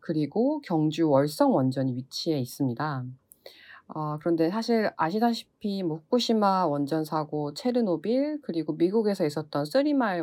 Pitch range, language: 140-210 Hz, Korean